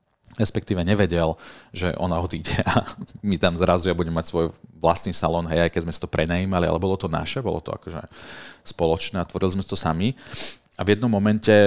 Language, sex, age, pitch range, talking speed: Slovak, male, 40-59, 85-105 Hz, 195 wpm